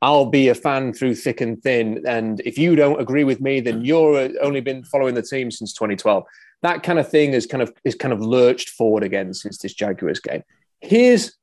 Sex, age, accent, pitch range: male, 30-49, British, 110-145 Hz